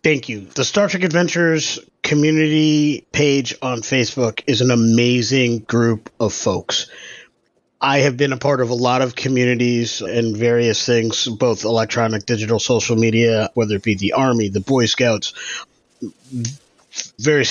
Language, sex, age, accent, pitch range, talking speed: English, male, 30-49, American, 115-130 Hz, 145 wpm